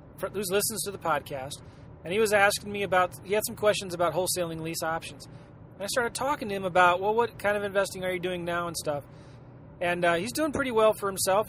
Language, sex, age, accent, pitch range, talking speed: English, male, 30-49, American, 155-205 Hz, 230 wpm